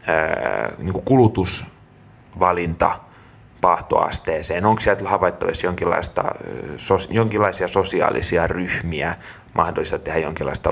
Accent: native